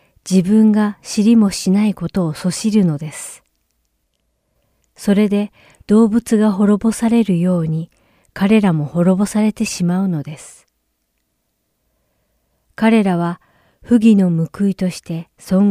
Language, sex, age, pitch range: Japanese, female, 40-59, 155-205 Hz